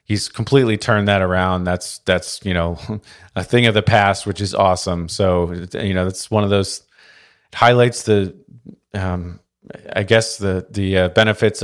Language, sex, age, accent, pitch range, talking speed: English, male, 30-49, American, 95-115 Hz, 170 wpm